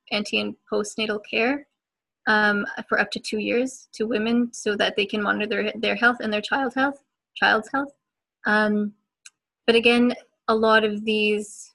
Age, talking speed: 20-39, 170 wpm